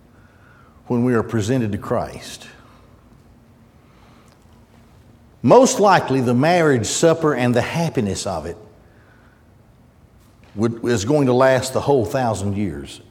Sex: male